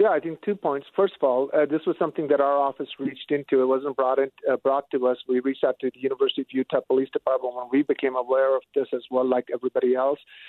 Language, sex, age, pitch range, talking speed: English, male, 50-69, 135-150 Hz, 265 wpm